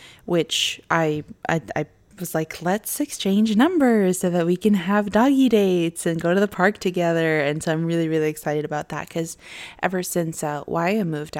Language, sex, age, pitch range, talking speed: English, female, 20-39, 155-180 Hz, 190 wpm